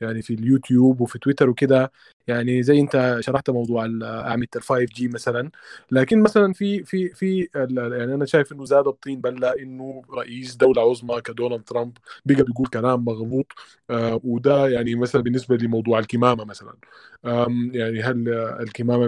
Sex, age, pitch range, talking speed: male, 20-39, 120-140 Hz, 150 wpm